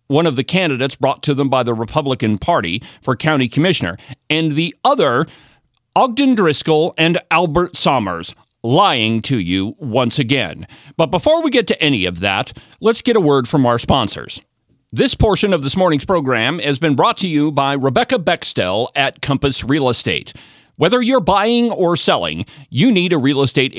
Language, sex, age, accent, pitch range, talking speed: English, male, 40-59, American, 130-185 Hz, 175 wpm